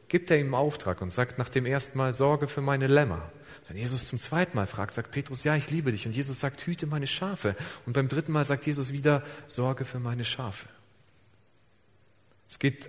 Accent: German